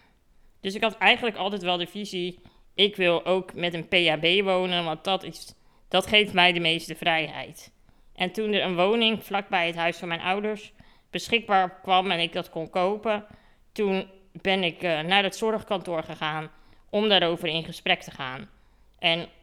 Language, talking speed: Dutch, 170 wpm